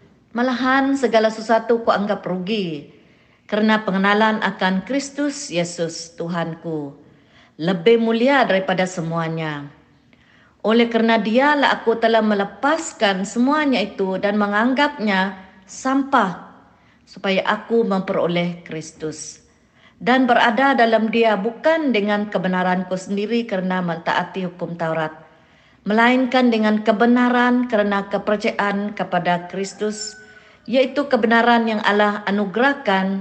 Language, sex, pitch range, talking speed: Malay, female, 175-230 Hz, 100 wpm